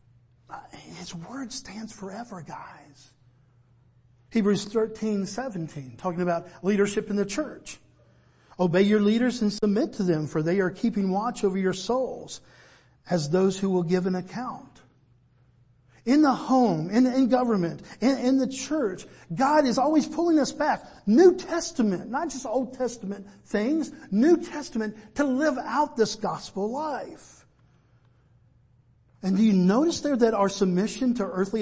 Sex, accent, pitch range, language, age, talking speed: male, American, 175-245 Hz, English, 50-69, 145 wpm